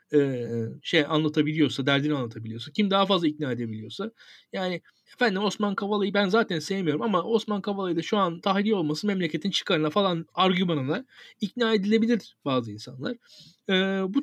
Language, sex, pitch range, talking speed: Turkish, male, 150-220 Hz, 140 wpm